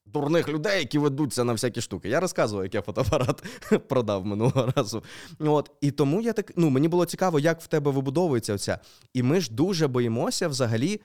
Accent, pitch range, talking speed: native, 115-165 Hz, 190 wpm